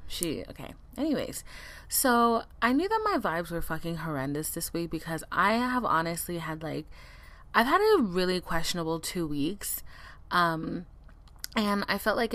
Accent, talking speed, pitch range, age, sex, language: American, 155 wpm, 160-200 Hz, 20-39, female, English